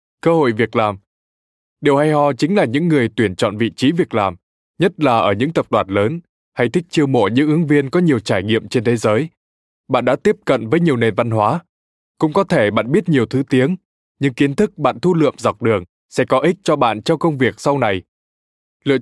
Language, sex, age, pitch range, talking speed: Vietnamese, male, 20-39, 110-155 Hz, 235 wpm